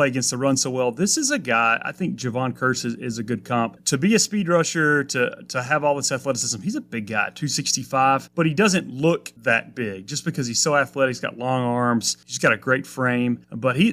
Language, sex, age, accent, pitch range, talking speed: English, male, 30-49, American, 120-145 Hz, 240 wpm